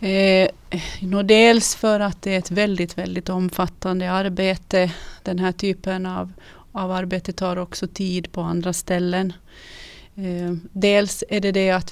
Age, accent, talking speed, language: 30-49, native, 145 wpm, Swedish